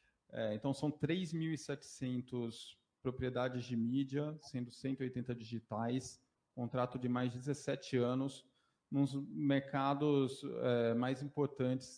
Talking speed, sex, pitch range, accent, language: 110 wpm, male, 115-135 Hz, Brazilian, Portuguese